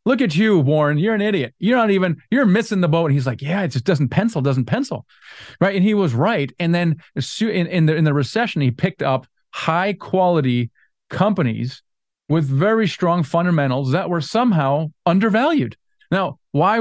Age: 30-49